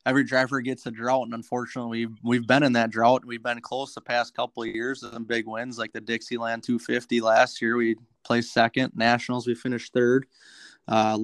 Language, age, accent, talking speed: English, 20-39, American, 210 wpm